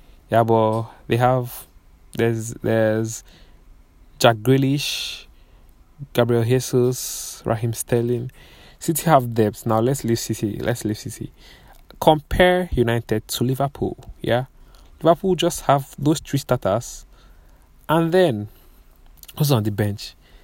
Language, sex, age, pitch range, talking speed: English, male, 20-39, 110-130 Hz, 115 wpm